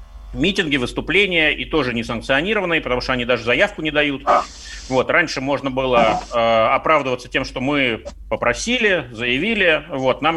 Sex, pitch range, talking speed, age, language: male, 125-165 Hz, 140 wpm, 30-49, Russian